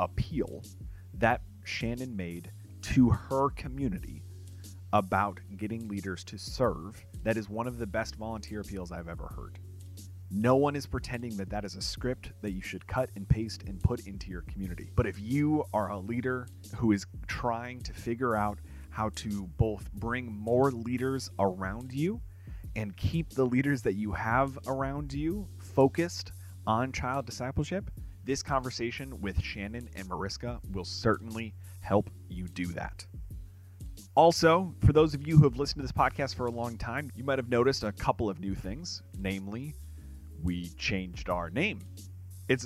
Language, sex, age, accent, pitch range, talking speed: English, male, 30-49, American, 95-120 Hz, 165 wpm